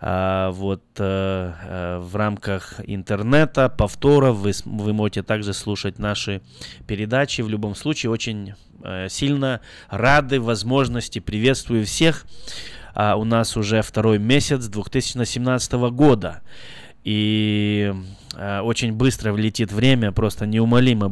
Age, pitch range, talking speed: 20-39, 100-120 Hz, 120 wpm